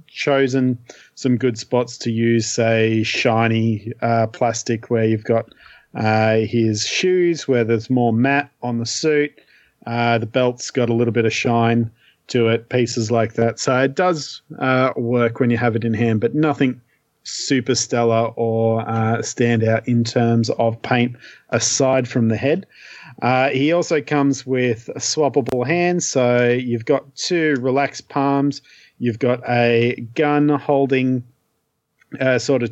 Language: English